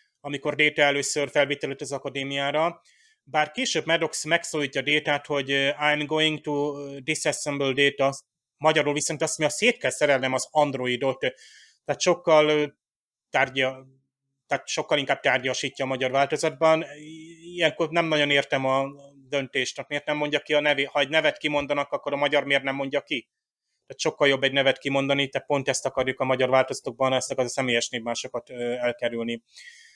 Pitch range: 135-155 Hz